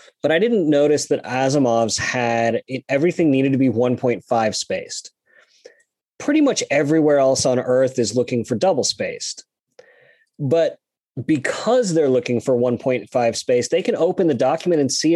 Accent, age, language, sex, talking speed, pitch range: American, 30-49, English, male, 155 wpm, 130-175 Hz